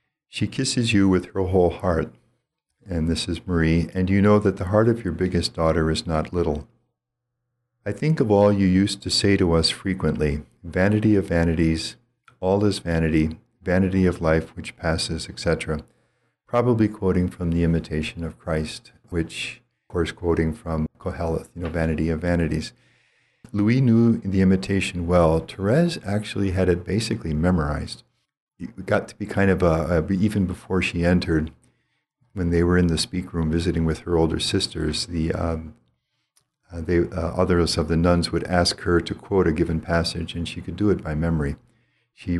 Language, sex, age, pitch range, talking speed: English, male, 50-69, 80-100 Hz, 175 wpm